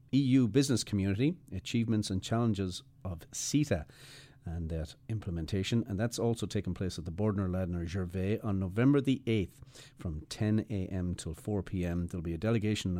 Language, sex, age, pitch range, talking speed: English, male, 40-59, 90-120 Hz, 155 wpm